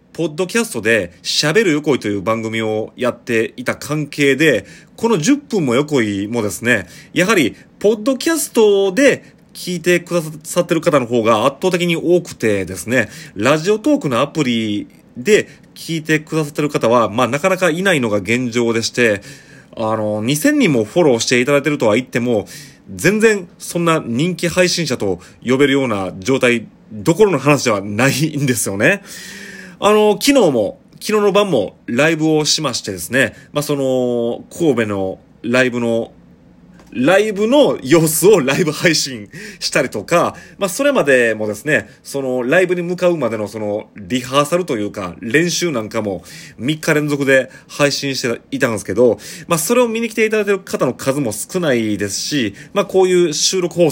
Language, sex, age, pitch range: Japanese, male, 30-49, 120-180 Hz